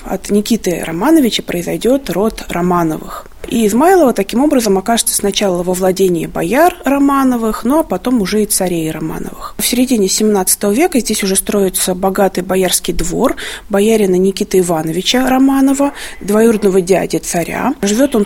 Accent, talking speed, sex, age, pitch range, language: native, 140 wpm, female, 20-39, 190-255 Hz, Russian